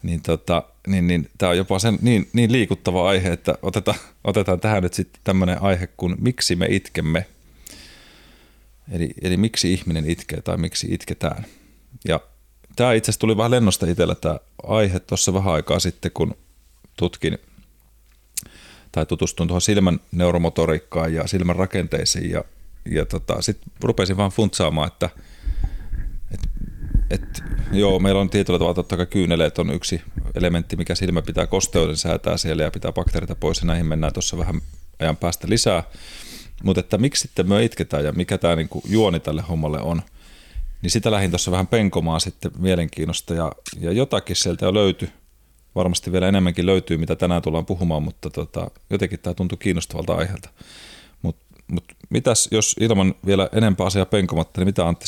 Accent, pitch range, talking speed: native, 80-95 Hz, 160 wpm